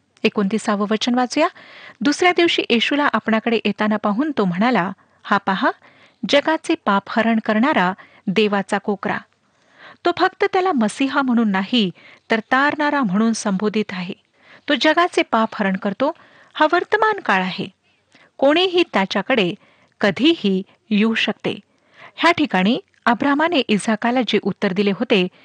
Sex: female